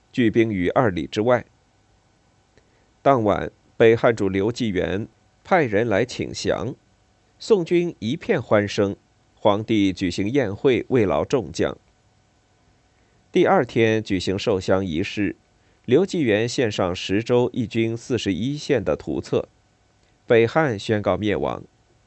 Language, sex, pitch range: Chinese, male, 105-125 Hz